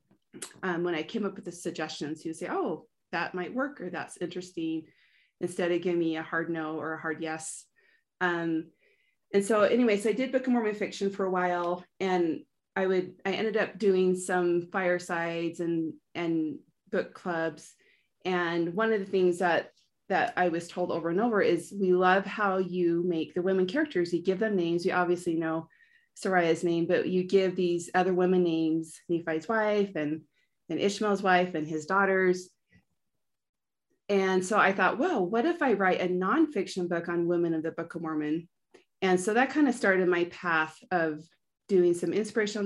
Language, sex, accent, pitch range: English, female, American, 170-195 Hz